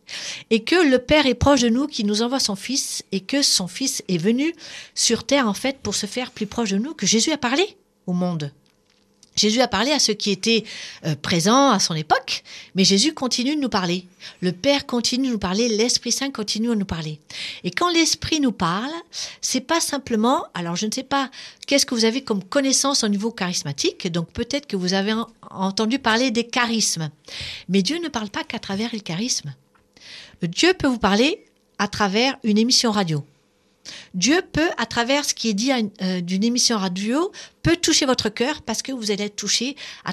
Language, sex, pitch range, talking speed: French, female, 190-260 Hz, 205 wpm